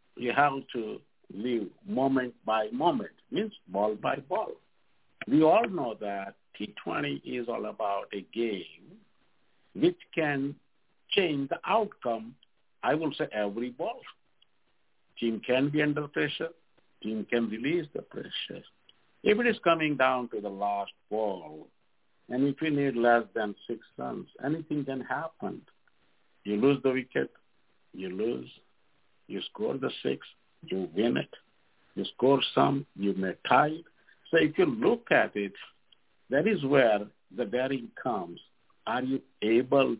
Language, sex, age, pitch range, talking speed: English, male, 60-79, 115-155 Hz, 145 wpm